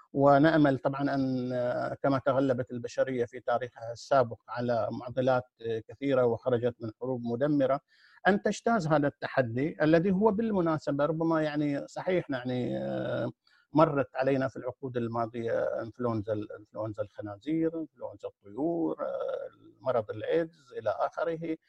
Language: Arabic